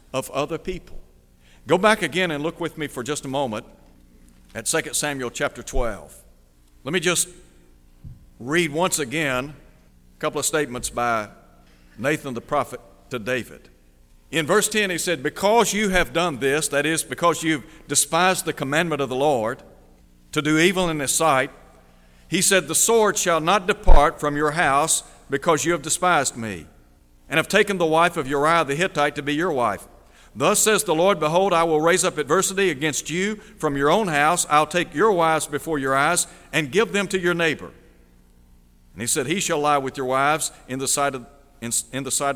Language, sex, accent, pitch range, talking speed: English, male, American, 125-175 Hz, 185 wpm